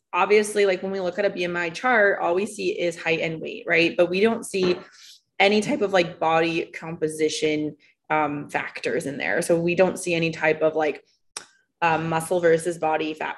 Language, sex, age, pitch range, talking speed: English, female, 20-39, 155-195 Hz, 195 wpm